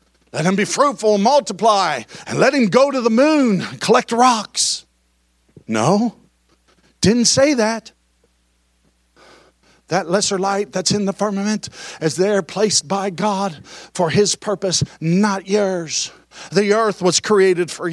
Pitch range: 175-285 Hz